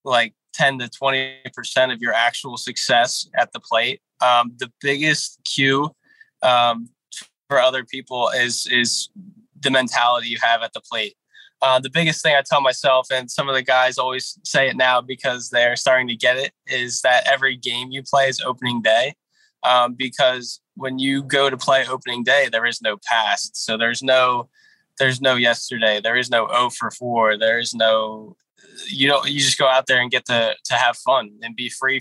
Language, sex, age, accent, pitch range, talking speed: English, male, 20-39, American, 120-140 Hz, 195 wpm